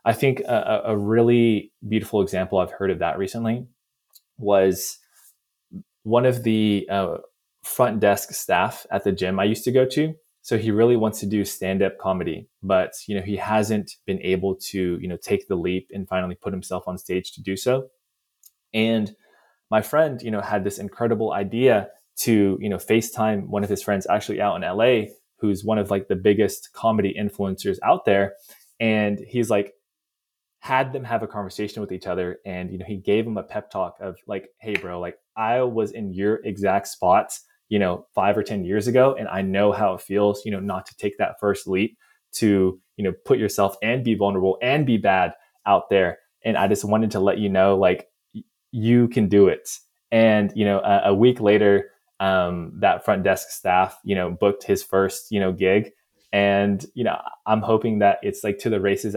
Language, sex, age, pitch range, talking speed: English, male, 20-39, 95-115 Hz, 200 wpm